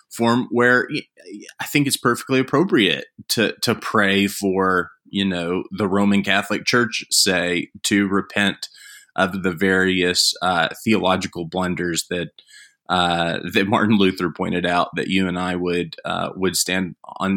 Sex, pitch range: male, 90-110 Hz